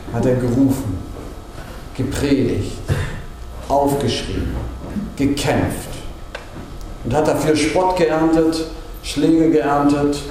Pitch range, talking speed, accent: 100-145 Hz, 75 wpm, German